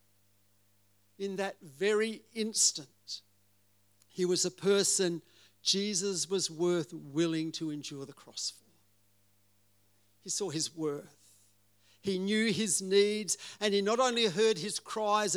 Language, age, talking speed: English, 60-79, 125 wpm